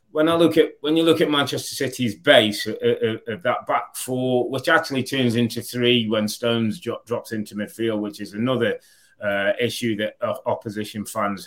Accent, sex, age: British, male, 30-49